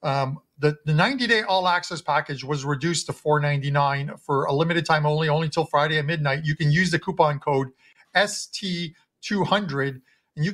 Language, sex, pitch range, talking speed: English, male, 145-175 Hz, 170 wpm